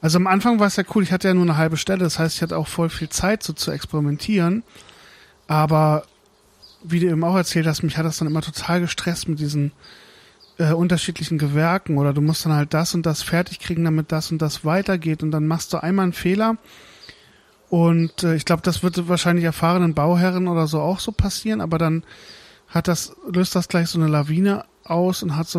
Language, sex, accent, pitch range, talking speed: German, male, German, 160-180 Hz, 215 wpm